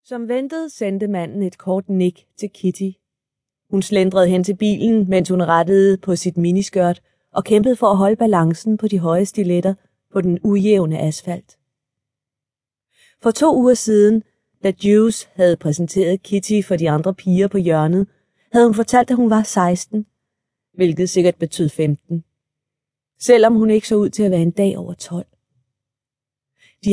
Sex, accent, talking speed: female, native, 165 wpm